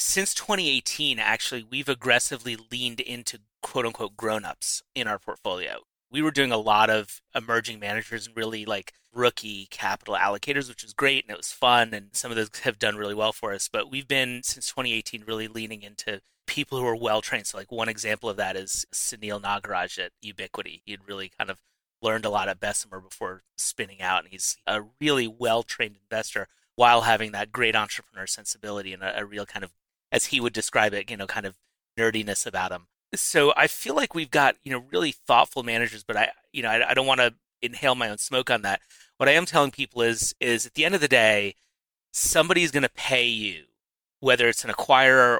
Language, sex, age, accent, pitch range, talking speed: English, male, 30-49, American, 105-130 Hz, 210 wpm